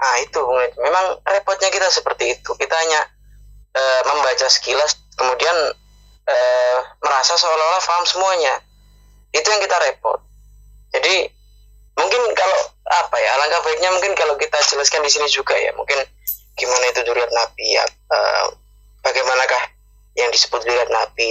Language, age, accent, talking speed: Indonesian, 10-29, native, 140 wpm